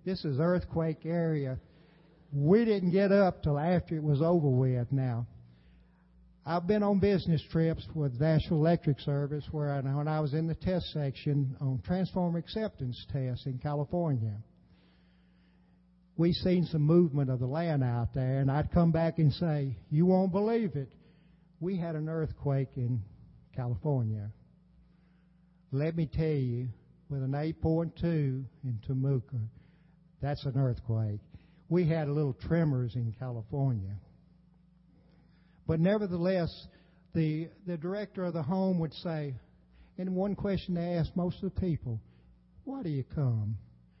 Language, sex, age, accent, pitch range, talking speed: English, male, 60-79, American, 130-175 Hz, 145 wpm